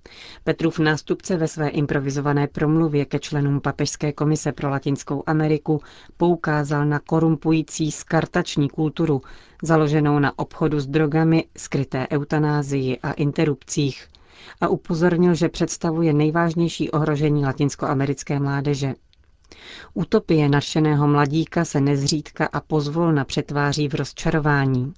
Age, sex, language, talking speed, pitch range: 40-59, female, Czech, 110 wpm, 140-165 Hz